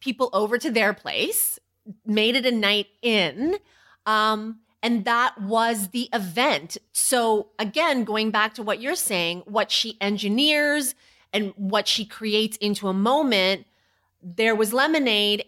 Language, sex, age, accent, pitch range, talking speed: English, female, 30-49, American, 195-270 Hz, 145 wpm